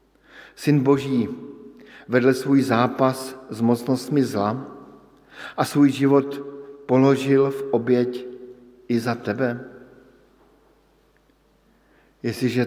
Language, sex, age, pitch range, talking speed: Slovak, male, 50-69, 115-140 Hz, 85 wpm